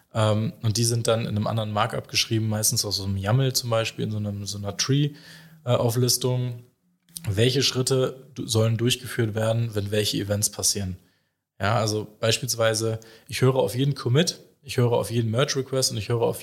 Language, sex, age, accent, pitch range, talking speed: German, male, 20-39, German, 105-130 Hz, 170 wpm